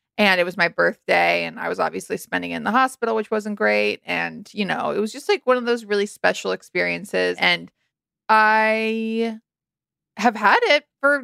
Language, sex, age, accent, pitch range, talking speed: English, female, 20-39, American, 195-250 Hz, 190 wpm